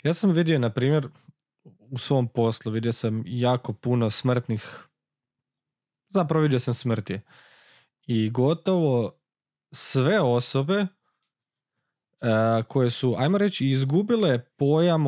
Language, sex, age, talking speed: Croatian, male, 20-39, 110 wpm